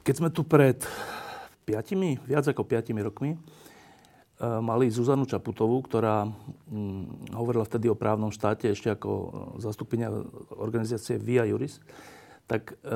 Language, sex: Slovak, male